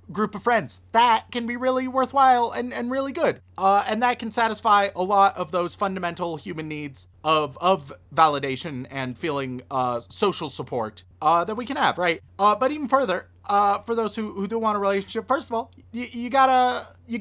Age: 30-49